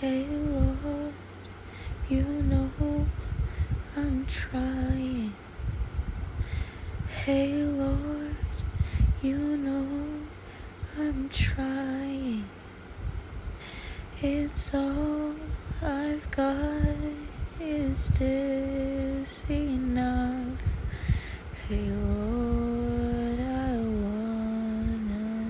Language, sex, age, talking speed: English, female, 10-29, 55 wpm